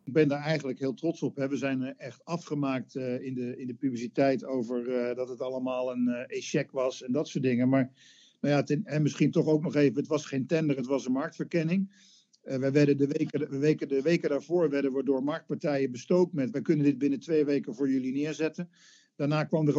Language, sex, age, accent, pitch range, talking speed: Dutch, male, 50-69, Dutch, 135-165 Hz, 235 wpm